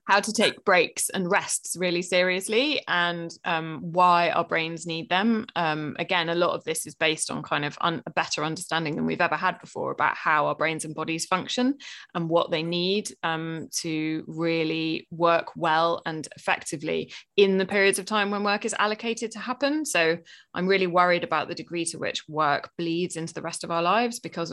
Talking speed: 200 wpm